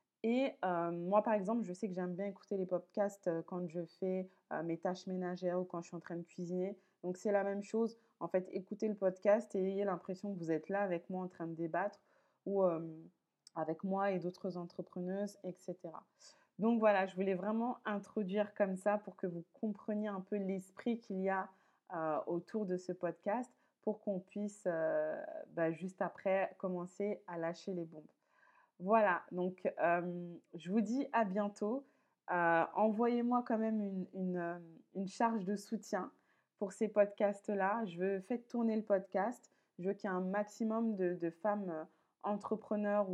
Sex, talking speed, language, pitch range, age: female, 185 wpm, French, 180-210 Hz, 20-39